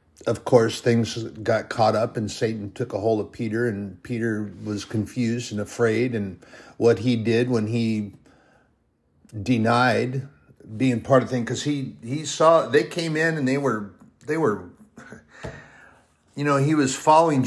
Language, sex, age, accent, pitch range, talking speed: English, male, 50-69, American, 110-130 Hz, 165 wpm